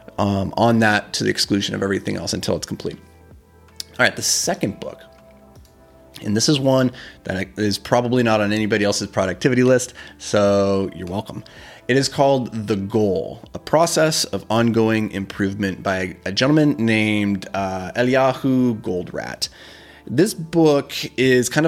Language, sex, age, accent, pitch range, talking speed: English, male, 30-49, American, 100-130 Hz, 150 wpm